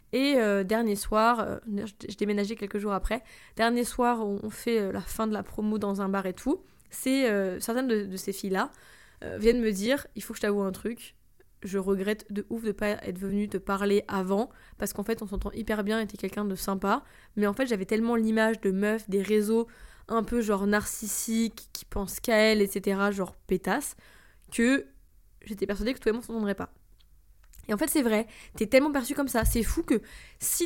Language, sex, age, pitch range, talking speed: French, female, 20-39, 205-245 Hz, 220 wpm